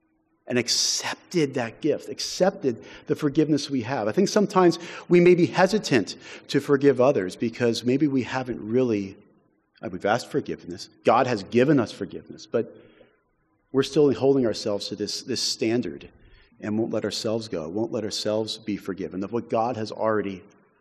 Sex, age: male, 40-59